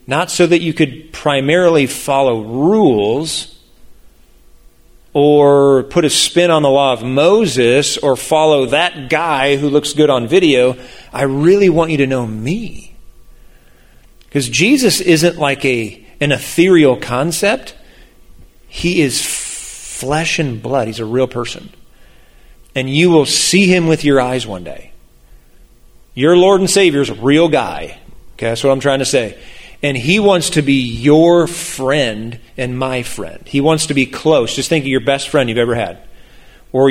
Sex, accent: male, American